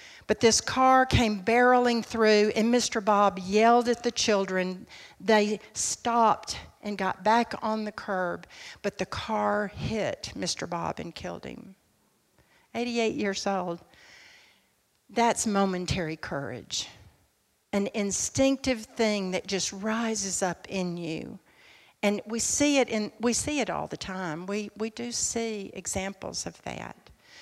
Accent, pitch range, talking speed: American, 200-245 Hz, 140 wpm